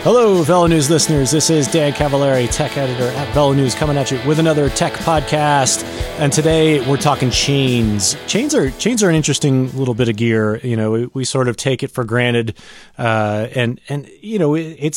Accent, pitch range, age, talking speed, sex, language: American, 110-140 Hz, 30-49, 205 wpm, male, English